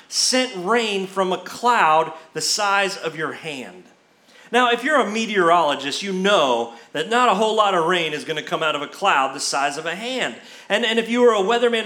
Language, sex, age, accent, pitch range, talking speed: English, male, 30-49, American, 180-250 Hz, 225 wpm